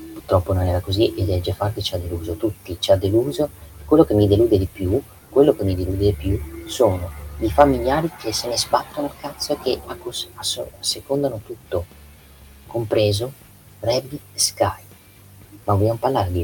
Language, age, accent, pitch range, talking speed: Italian, 30-49, native, 90-105 Hz, 180 wpm